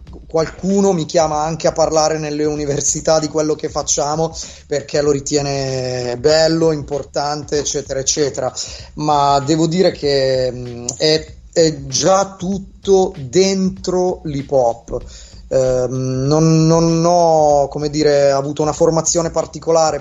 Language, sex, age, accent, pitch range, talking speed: Italian, male, 30-49, native, 145-175 Hz, 115 wpm